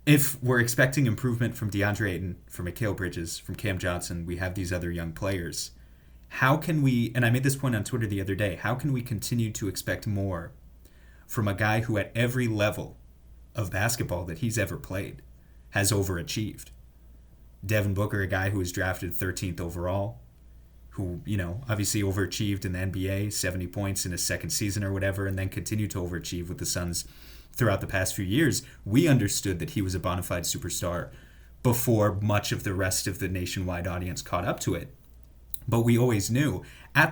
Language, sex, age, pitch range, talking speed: English, male, 30-49, 90-115 Hz, 190 wpm